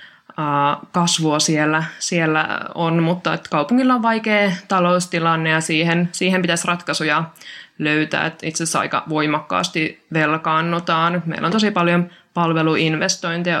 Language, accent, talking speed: Finnish, native, 115 wpm